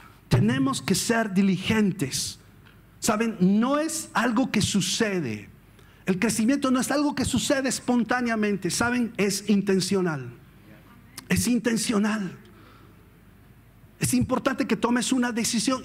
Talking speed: 110 wpm